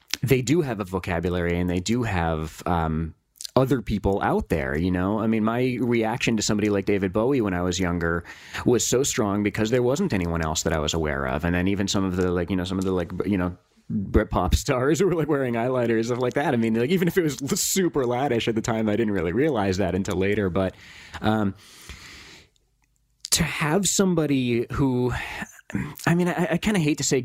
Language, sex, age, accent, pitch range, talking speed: English, male, 30-49, American, 100-135 Hz, 220 wpm